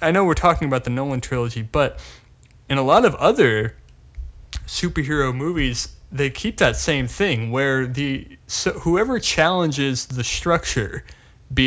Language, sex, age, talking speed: English, male, 20-39, 150 wpm